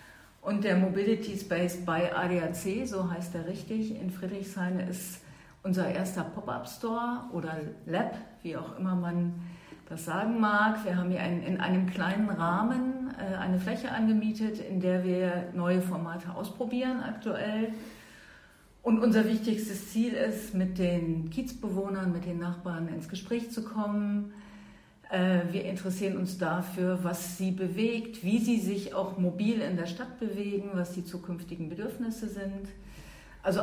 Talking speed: 140 wpm